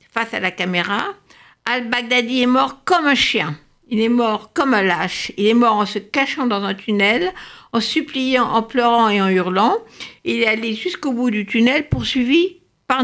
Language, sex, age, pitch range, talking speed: French, female, 60-79, 185-255 Hz, 190 wpm